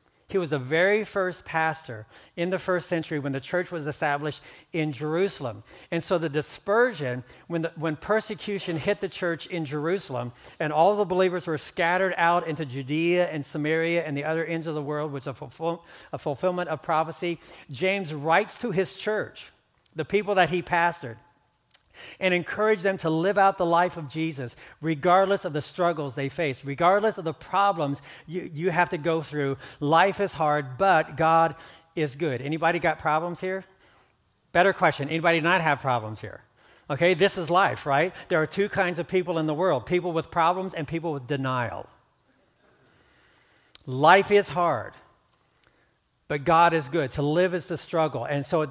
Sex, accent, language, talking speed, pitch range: male, American, English, 175 wpm, 150-180 Hz